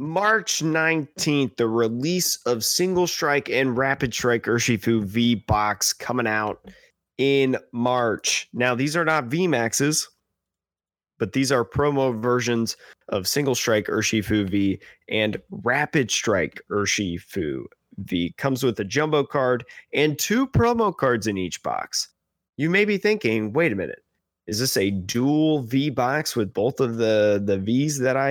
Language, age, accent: English, 30-49, American